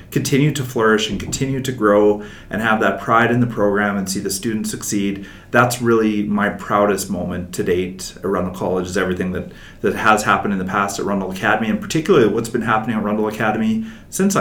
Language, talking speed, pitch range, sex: English, 210 wpm, 100-125 Hz, male